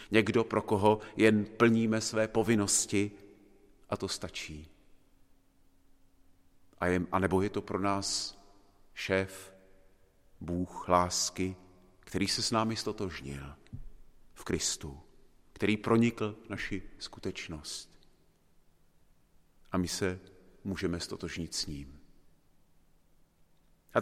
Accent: native